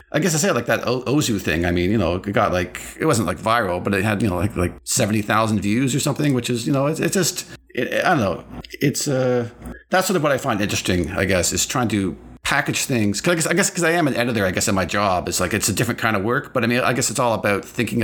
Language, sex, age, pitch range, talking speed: English, male, 40-59, 100-130 Hz, 295 wpm